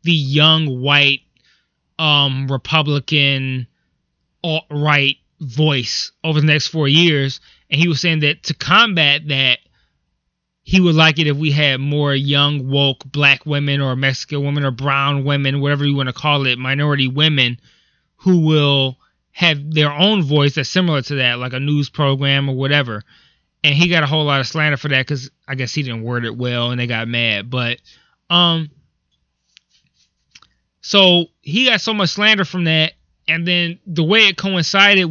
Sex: male